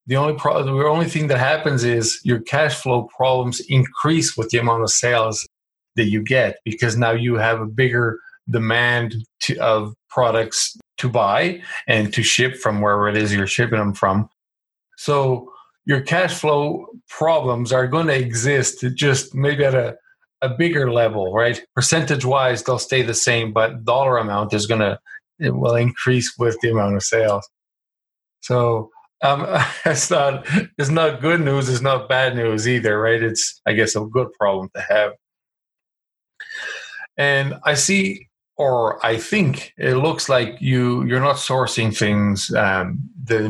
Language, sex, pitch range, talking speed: English, male, 115-140 Hz, 165 wpm